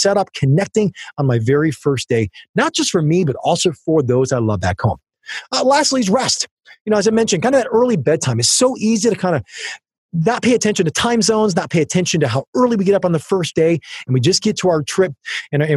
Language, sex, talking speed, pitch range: English, male, 255 wpm, 145-210 Hz